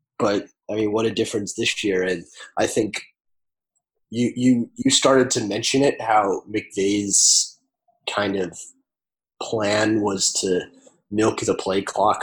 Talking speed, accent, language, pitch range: 140 wpm, American, English, 100-115 Hz